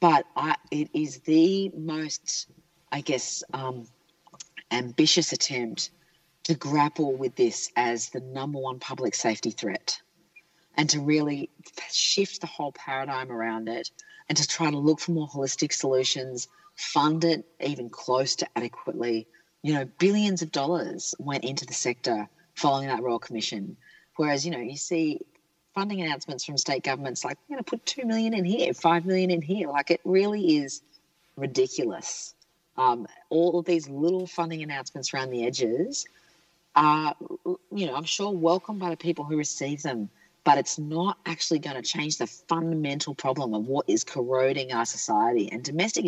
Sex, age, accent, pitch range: female, 40-59, Australian, 140-175 Hz